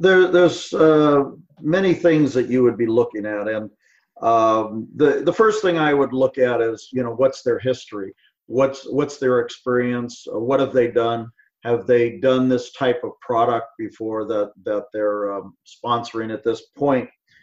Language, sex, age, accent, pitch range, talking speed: English, male, 50-69, American, 120-145 Hz, 175 wpm